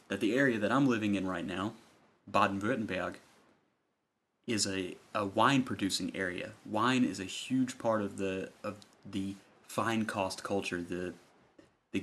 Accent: American